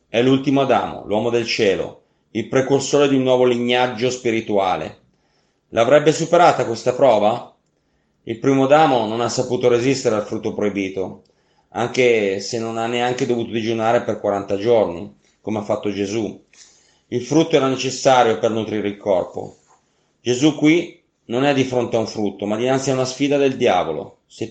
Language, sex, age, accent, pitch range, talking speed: Italian, male, 30-49, native, 115-140 Hz, 160 wpm